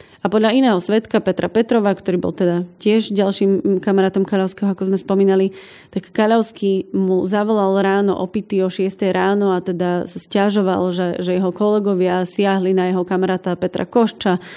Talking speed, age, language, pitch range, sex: 160 wpm, 20-39, Slovak, 190-210 Hz, female